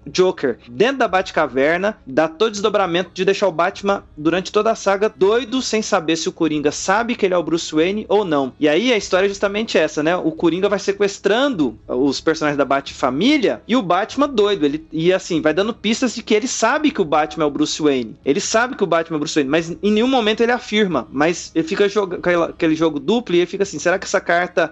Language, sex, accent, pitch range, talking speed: Portuguese, male, Brazilian, 150-195 Hz, 235 wpm